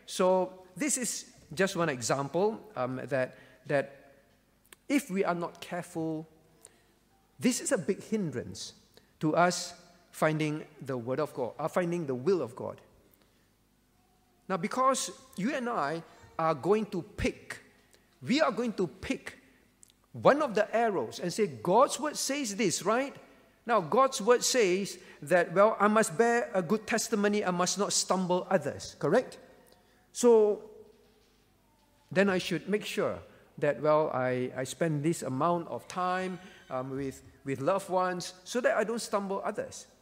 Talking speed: 150 wpm